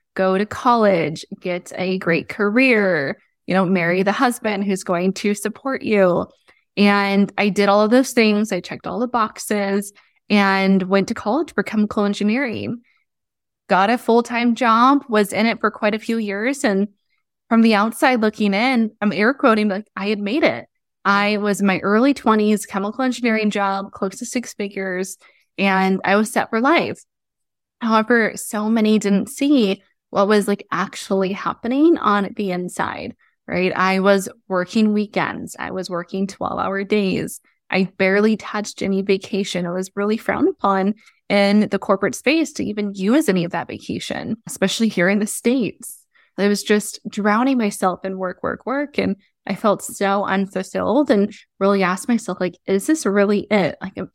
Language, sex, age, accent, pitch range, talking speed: English, female, 20-39, American, 195-230 Hz, 175 wpm